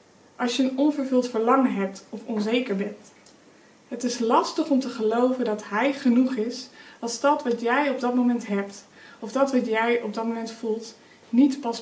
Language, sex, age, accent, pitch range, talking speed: Dutch, female, 20-39, Dutch, 220-265 Hz, 190 wpm